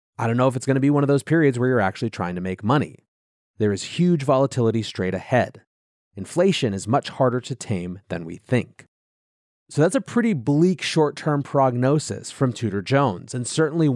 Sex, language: male, English